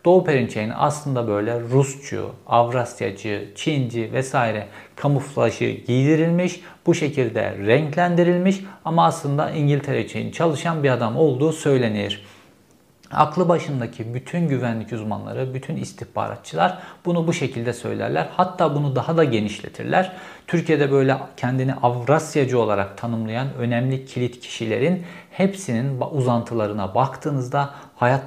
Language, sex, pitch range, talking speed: Turkish, male, 115-150 Hz, 105 wpm